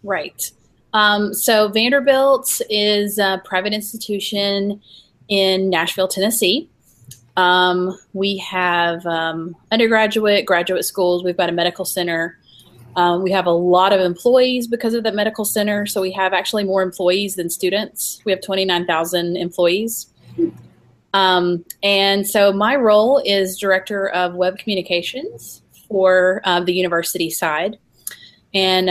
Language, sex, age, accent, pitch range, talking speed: English, female, 30-49, American, 170-205 Hz, 130 wpm